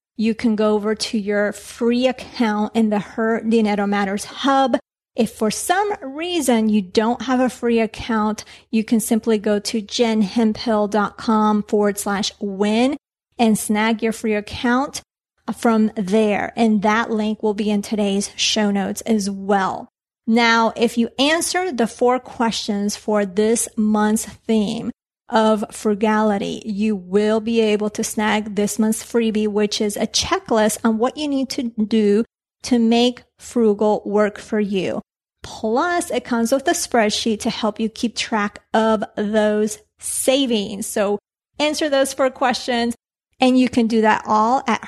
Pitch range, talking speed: 210-240 Hz, 155 wpm